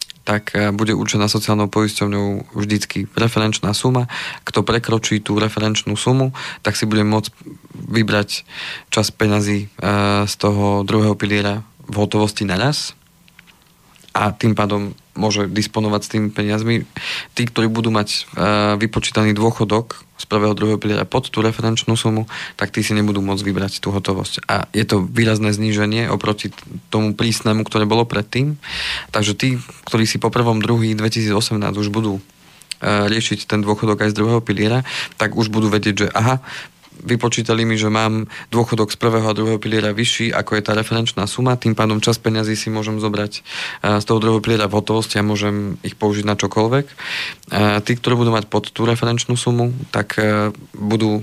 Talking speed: 160 wpm